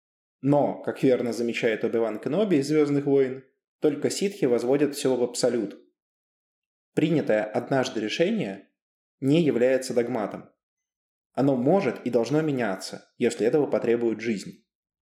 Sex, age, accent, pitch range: male, 20-39, native, 115-150 Hz